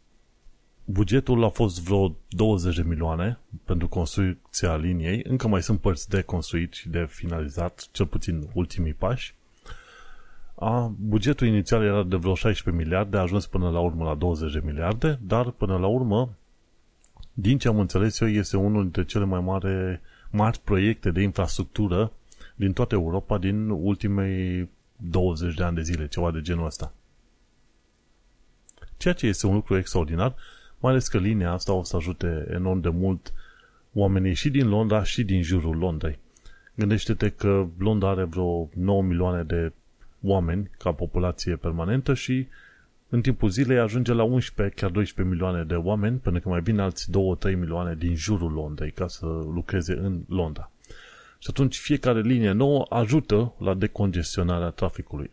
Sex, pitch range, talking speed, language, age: male, 85-105 Hz, 160 wpm, Romanian, 30-49